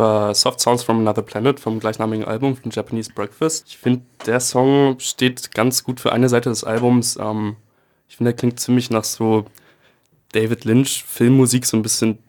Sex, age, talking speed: male, 20-39, 175 wpm